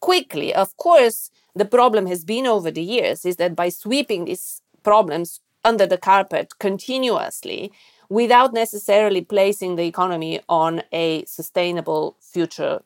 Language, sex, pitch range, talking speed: English, female, 175-220 Hz, 135 wpm